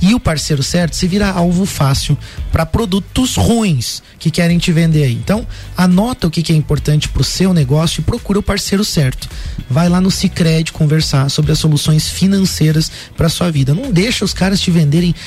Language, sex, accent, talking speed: Portuguese, male, Brazilian, 195 wpm